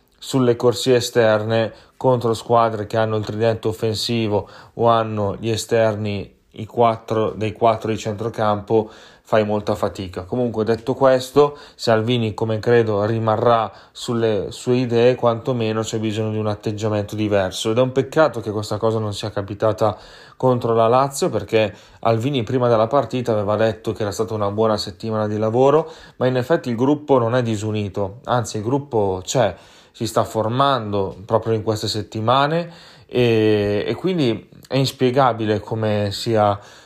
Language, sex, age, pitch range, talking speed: Italian, male, 20-39, 110-125 Hz, 150 wpm